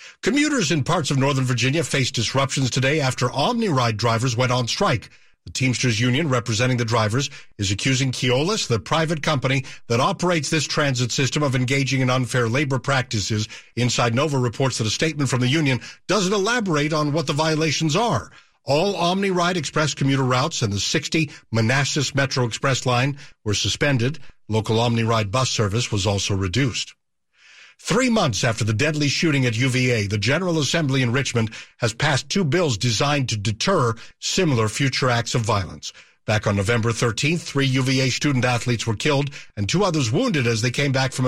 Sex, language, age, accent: male, English, 50-69, American